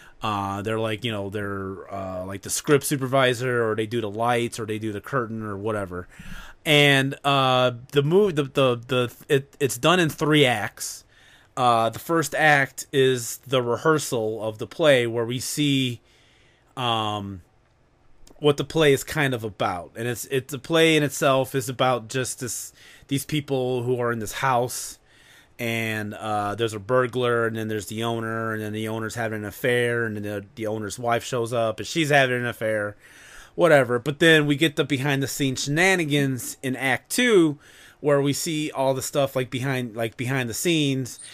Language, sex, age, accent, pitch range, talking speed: English, male, 30-49, American, 115-140 Hz, 190 wpm